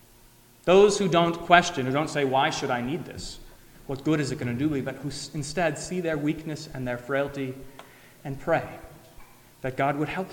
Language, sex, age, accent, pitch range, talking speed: English, male, 30-49, American, 140-190 Hz, 205 wpm